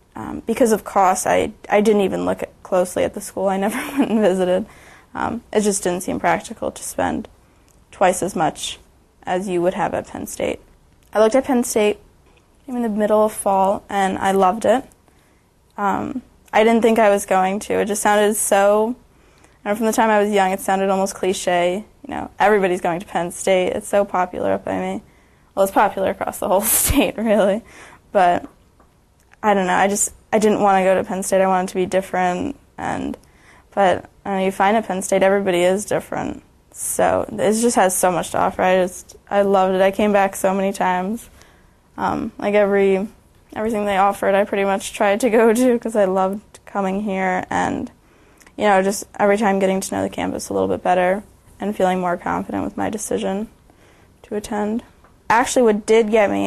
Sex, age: female, 20-39